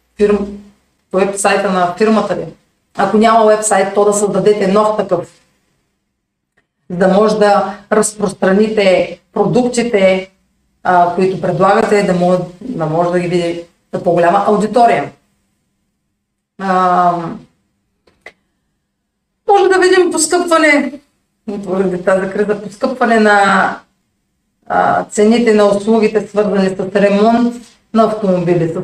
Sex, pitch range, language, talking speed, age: female, 180-215 Hz, Bulgarian, 105 wpm, 30-49